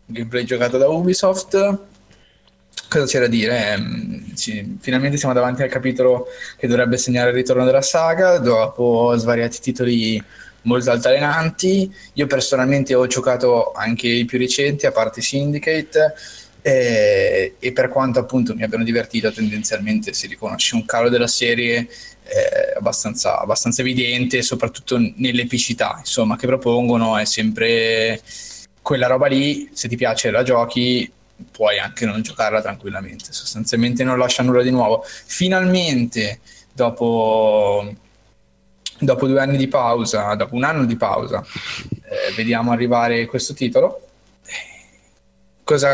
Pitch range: 115-145 Hz